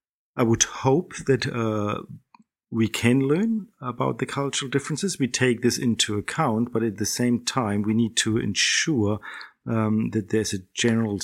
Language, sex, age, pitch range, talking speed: English, male, 50-69, 105-120 Hz, 165 wpm